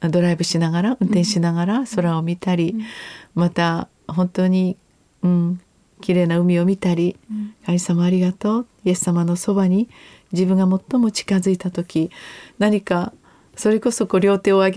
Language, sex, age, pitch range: Japanese, female, 40-59, 175-220 Hz